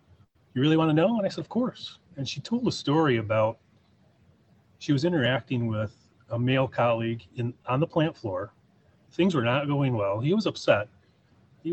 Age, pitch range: 30-49, 120-170 Hz